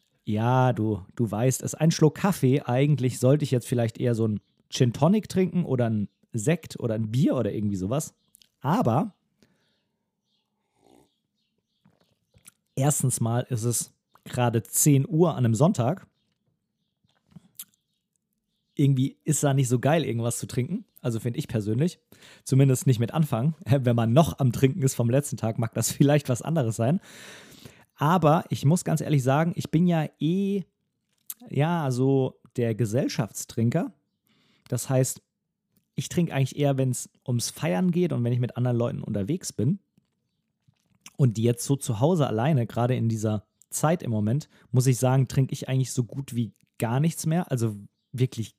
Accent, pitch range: German, 120-160 Hz